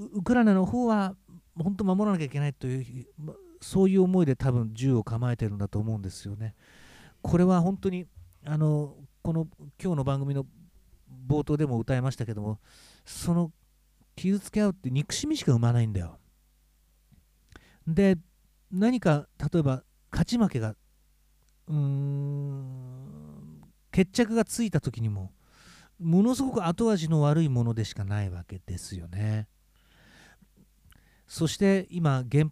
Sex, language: male, Japanese